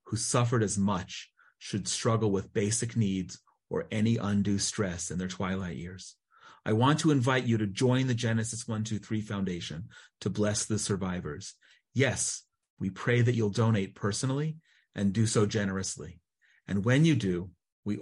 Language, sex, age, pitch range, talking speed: English, male, 40-59, 100-120 Hz, 160 wpm